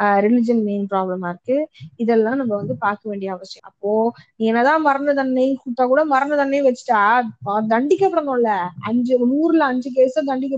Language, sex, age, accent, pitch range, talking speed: Tamil, female, 20-39, native, 210-260 Hz, 85 wpm